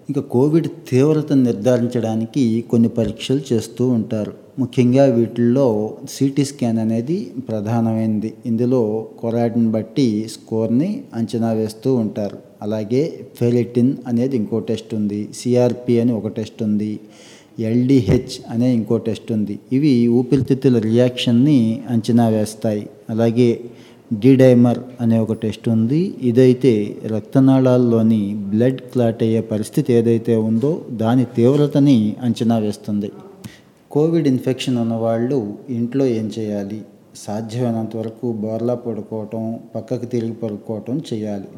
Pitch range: 110-125 Hz